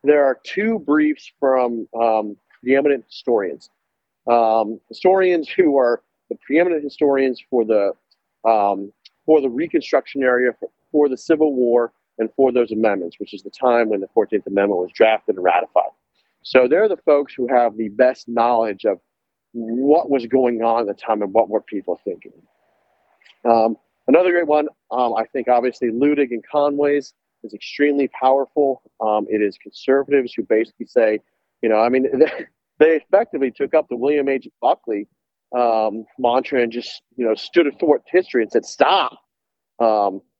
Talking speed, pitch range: 165 wpm, 115-140 Hz